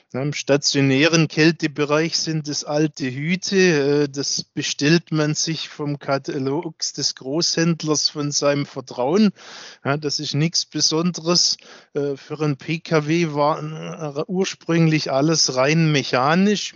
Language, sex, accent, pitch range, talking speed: German, male, German, 135-160 Hz, 105 wpm